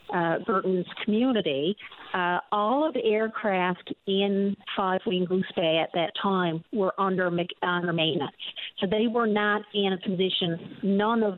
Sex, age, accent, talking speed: female, 50-69, American, 150 wpm